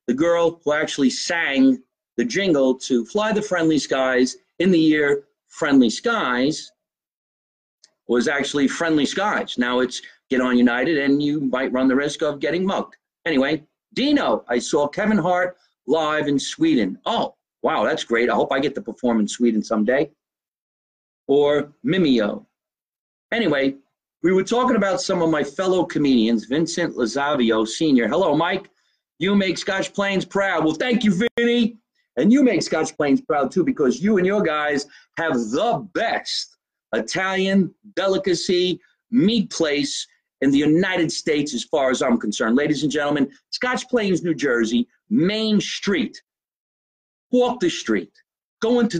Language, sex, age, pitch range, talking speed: English, male, 40-59, 140-205 Hz, 155 wpm